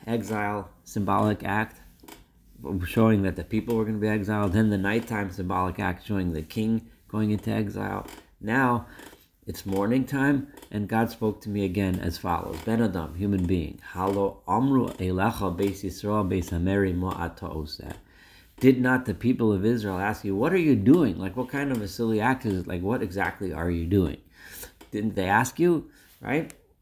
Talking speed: 160 wpm